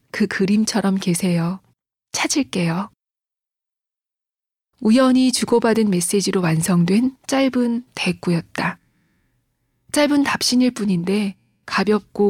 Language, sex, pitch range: Korean, female, 180-225 Hz